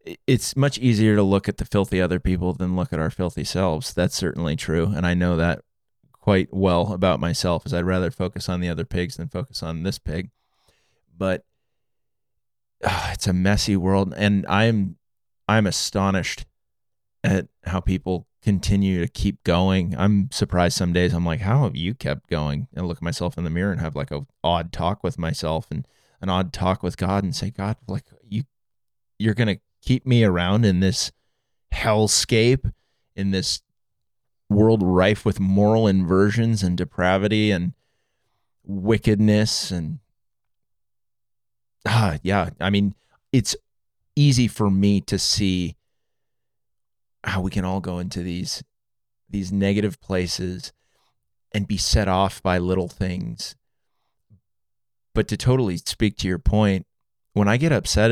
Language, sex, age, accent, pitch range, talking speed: English, male, 20-39, American, 90-110 Hz, 160 wpm